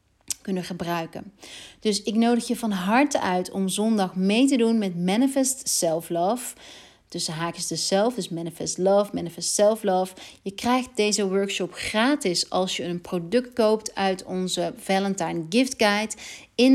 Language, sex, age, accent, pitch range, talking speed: Dutch, female, 40-59, Dutch, 175-215 Hz, 160 wpm